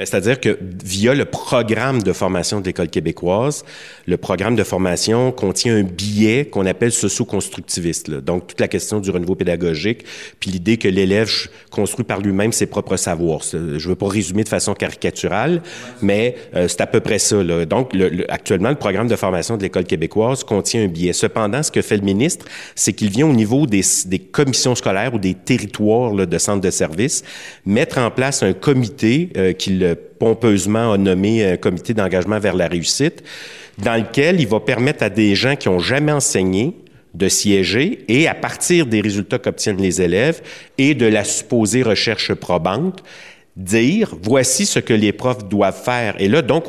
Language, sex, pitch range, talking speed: French, male, 100-125 Hz, 190 wpm